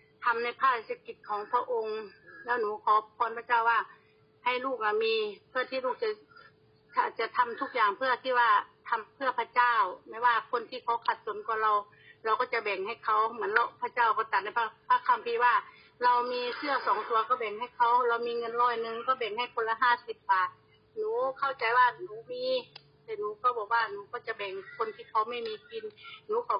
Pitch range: 220-265 Hz